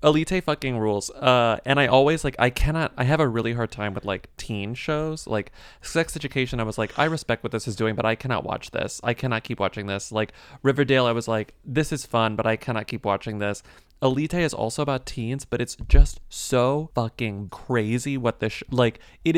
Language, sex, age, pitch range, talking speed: English, male, 20-39, 115-145 Hz, 225 wpm